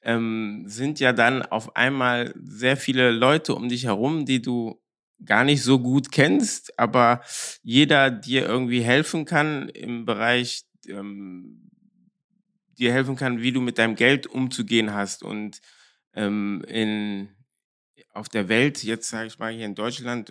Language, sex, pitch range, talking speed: German, male, 110-135 Hz, 150 wpm